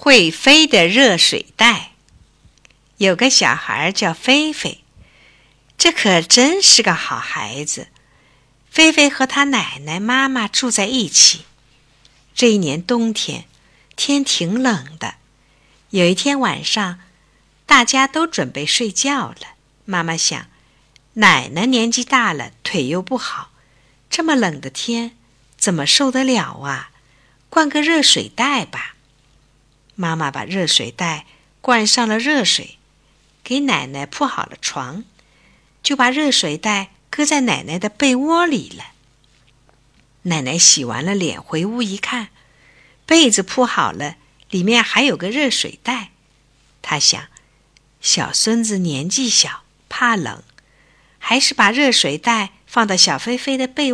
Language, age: Chinese, 60-79